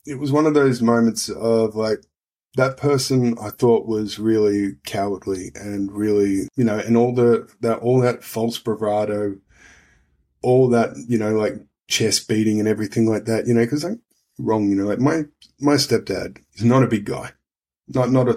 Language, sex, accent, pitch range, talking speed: English, male, Australian, 100-120 Hz, 185 wpm